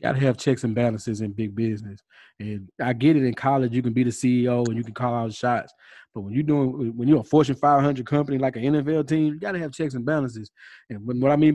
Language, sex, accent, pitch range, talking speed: English, male, American, 130-180 Hz, 280 wpm